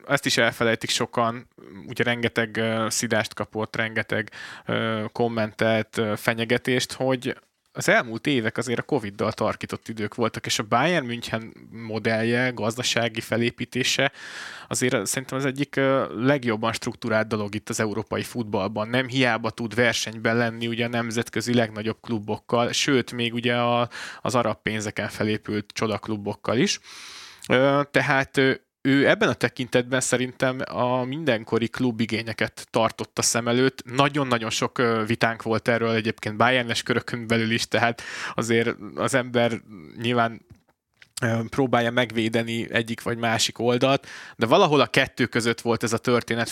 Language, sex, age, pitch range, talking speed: Hungarian, male, 20-39, 110-125 Hz, 130 wpm